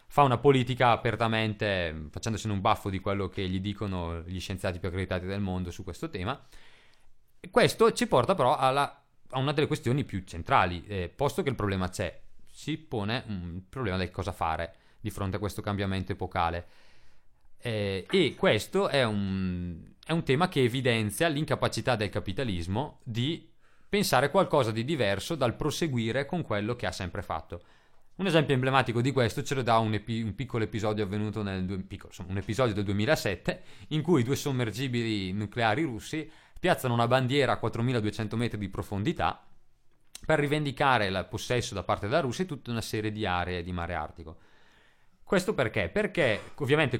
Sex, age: male, 30-49